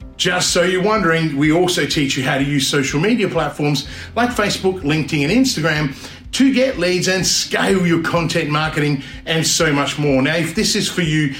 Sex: male